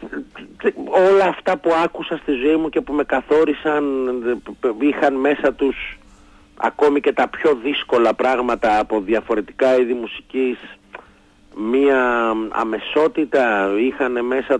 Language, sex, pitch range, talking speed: Greek, male, 115-145 Hz, 115 wpm